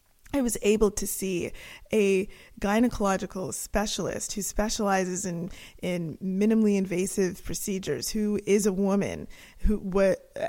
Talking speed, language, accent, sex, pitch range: 120 wpm, English, American, female, 185-225 Hz